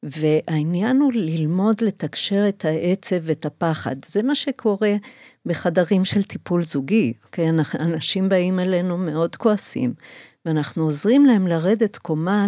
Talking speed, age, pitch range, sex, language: 125 wpm, 50-69, 165-210 Hz, female, Hebrew